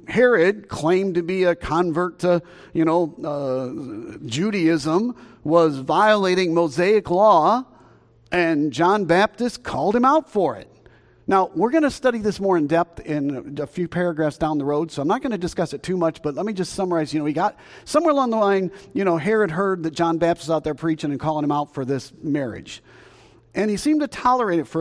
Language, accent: English, American